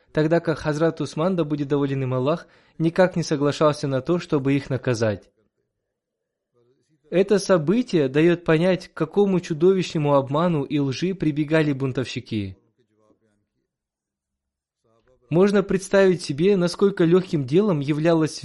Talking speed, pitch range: 115 wpm, 135-170 Hz